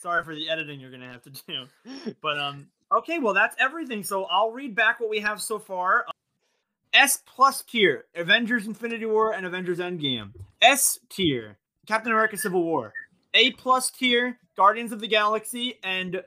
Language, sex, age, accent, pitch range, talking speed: English, male, 20-39, American, 165-225 Hz, 165 wpm